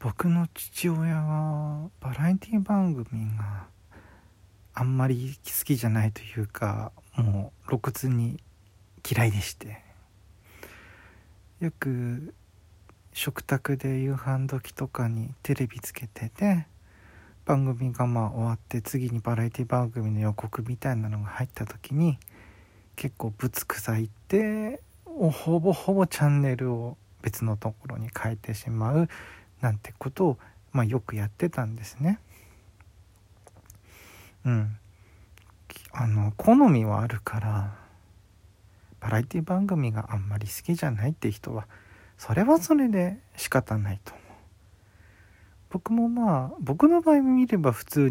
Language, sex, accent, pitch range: Japanese, male, native, 100-140 Hz